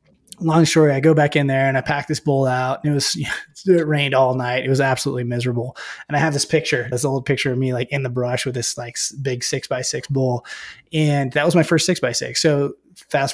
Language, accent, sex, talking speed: English, American, male, 250 wpm